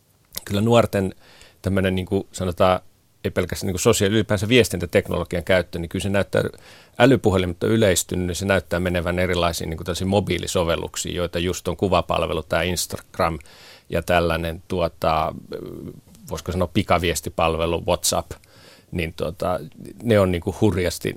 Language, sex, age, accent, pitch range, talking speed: Finnish, male, 40-59, native, 85-100 Hz, 130 wpm